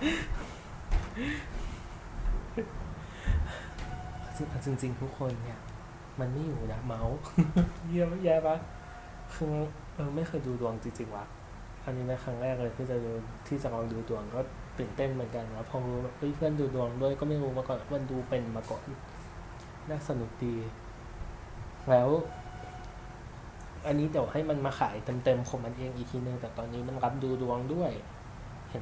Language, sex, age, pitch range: Thai, male, 20-39, 115-135 Hz